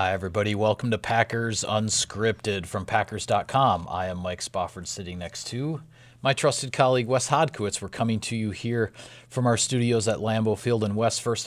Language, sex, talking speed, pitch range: English, male, 180 wpm, 95-120 Hz